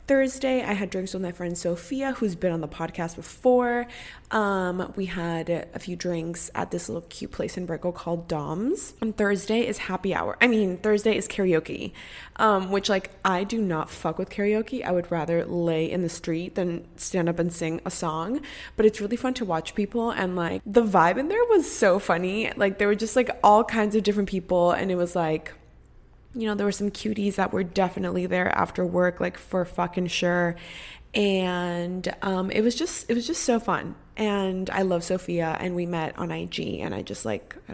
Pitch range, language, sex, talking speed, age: 175-220 Hz, English, female, 210 wpm, 20-39